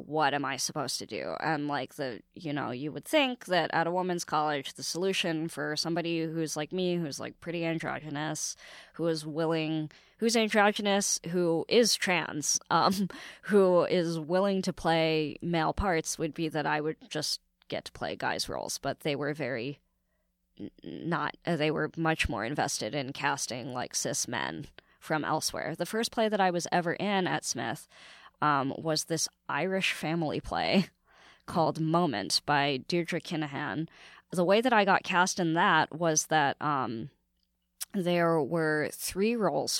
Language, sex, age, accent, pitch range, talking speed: English, female, 20-39, American, 150-180 Hz, 165 wpm